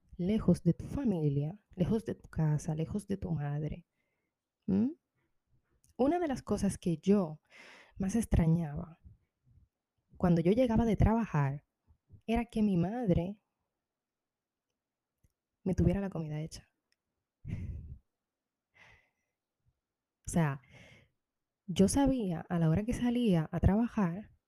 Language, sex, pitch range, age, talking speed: Spanish, female, 155-215 Hz, 20-39, 110 wpm